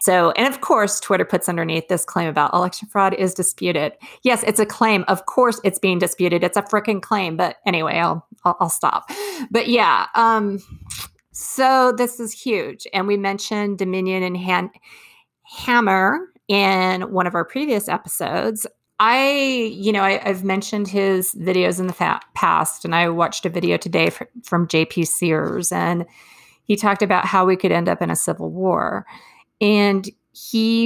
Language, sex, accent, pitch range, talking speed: English, female, American, 175-215 Hz, 175 wpm